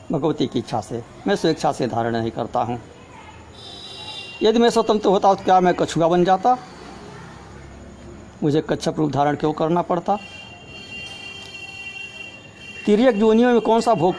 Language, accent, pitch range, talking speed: Hindi, native, 145-190 Hz, 145 wpm